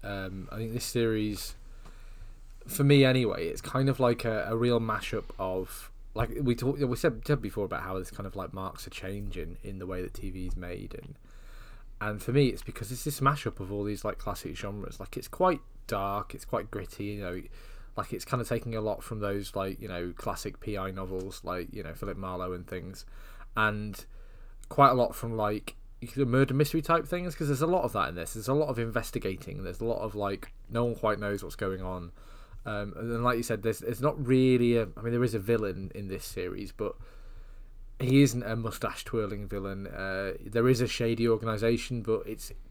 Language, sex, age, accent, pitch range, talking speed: English, male, 20-39, British, 100-120 Hz, 220 wpm